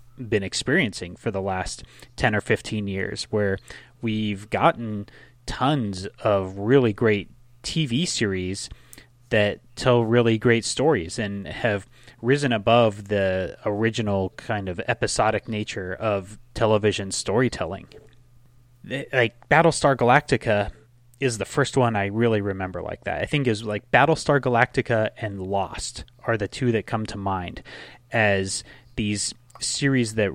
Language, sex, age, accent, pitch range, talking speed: English, male, 30-49, American, 100-120 Hz, 130 wpm